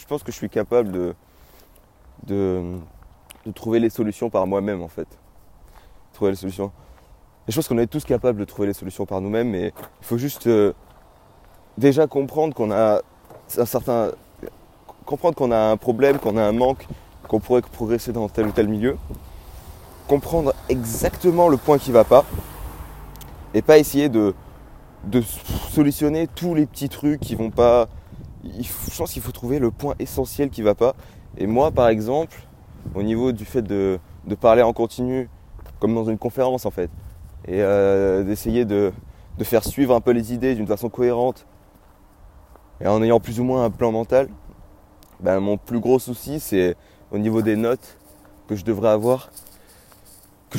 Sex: male